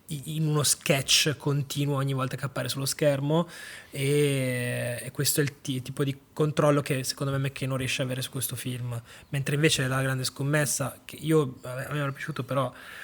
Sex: male